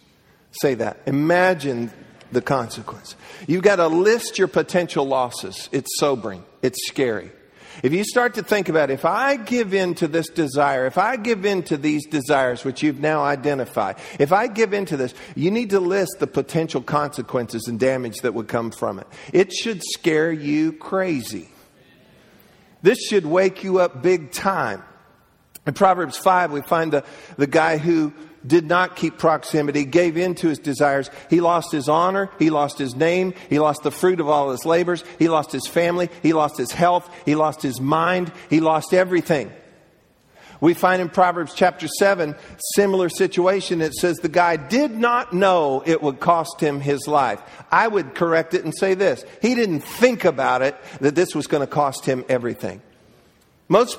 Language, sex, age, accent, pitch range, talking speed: English, male, 50-69, American, 145-180 Hz, 180 wpm